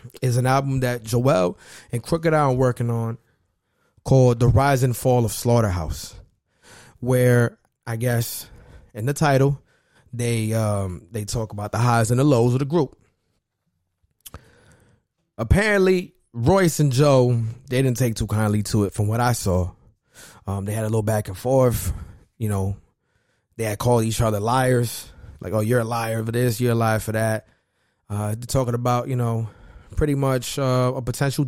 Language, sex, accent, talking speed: English, male, American, 175 wpm